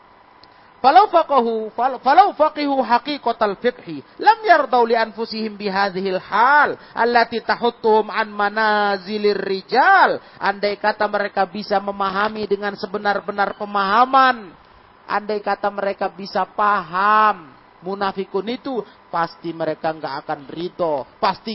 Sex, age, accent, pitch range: male, 40-59, native, 135-225 Hz